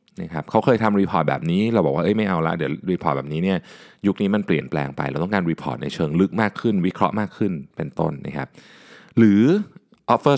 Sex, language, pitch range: male, Thai, 85-135 Hz